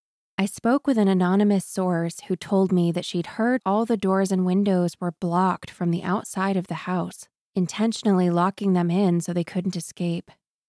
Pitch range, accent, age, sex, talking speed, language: 175-200 Hz, American, 20-39, female, 185 wpm, English